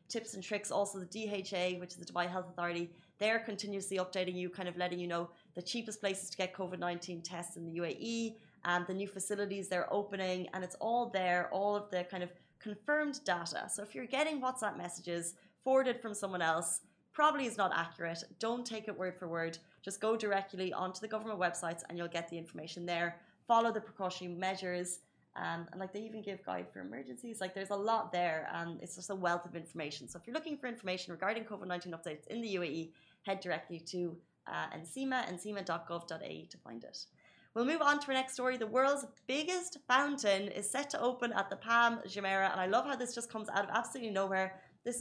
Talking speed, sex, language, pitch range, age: 210 wpm, female, Arabic, 175-230 Hz, 20-39